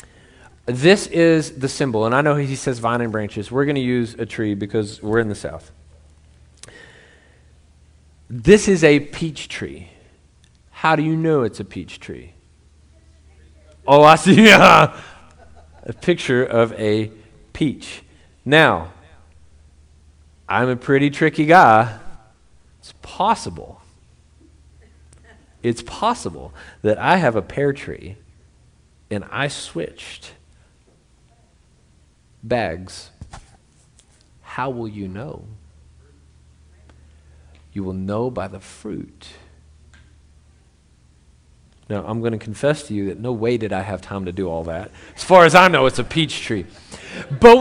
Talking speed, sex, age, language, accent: 130 wpm, male, 40-59, English, American